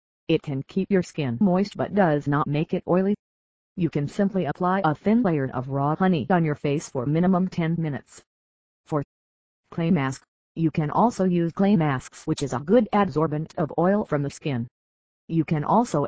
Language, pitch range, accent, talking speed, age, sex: English, 140-185 Hz, American, 190 wpm, 50-69, female